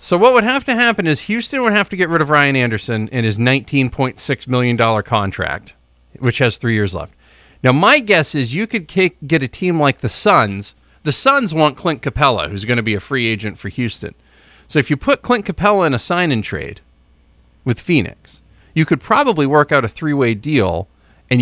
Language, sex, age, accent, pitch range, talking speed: English, male, 40-59, American, 105-145 Hz, 200 wpm